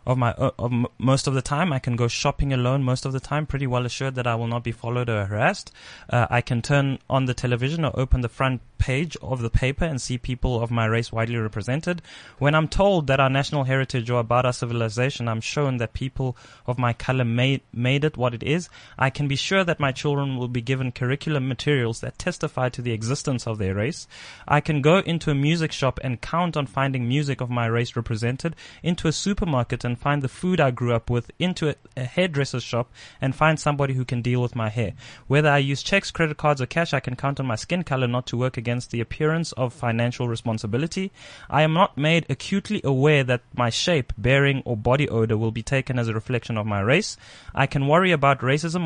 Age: 20-39